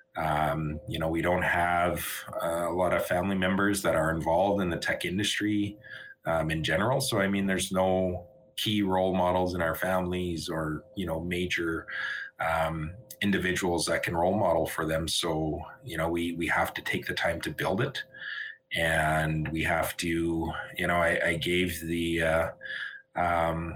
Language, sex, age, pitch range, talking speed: English, male, 30-49, 80-100 Hz, 175 wpm